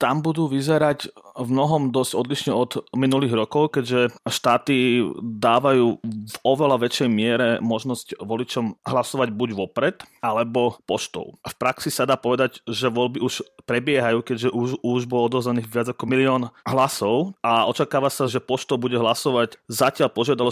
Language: Slovak